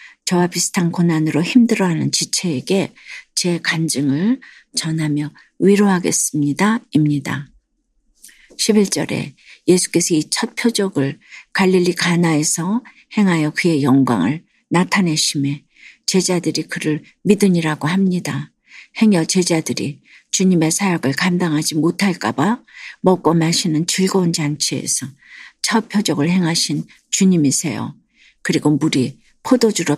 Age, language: 50-69, Korean